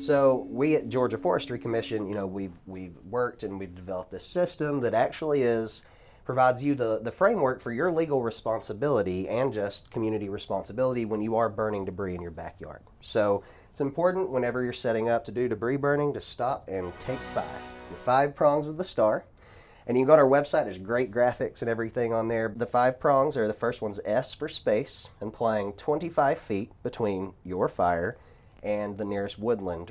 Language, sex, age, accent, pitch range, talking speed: English, male, 30-49, American, 100-130 Hz, 190 wpm